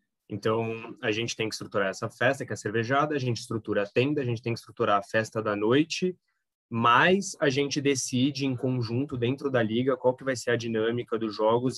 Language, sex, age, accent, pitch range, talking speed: Portuguese, male, 20-39, Brazilian, 110-130 Hz, 220 wpm